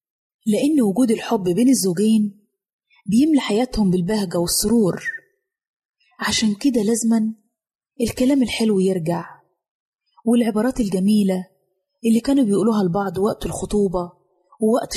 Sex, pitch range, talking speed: female, 180-230 Hz, 95 wpm